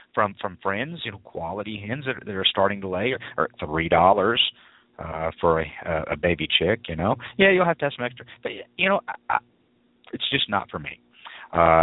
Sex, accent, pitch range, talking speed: male, American, 90-135 Hz, 215 wpm